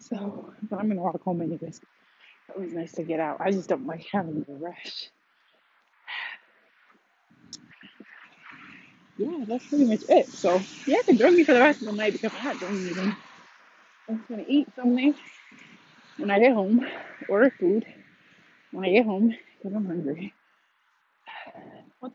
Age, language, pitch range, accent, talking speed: 30-49, English, 175-245 Hz, American, 165 wpm